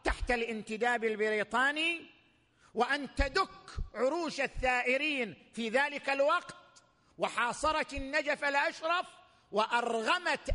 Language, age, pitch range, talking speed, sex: Arabic, 50-69, 220-285 Hz, 80 wpm, male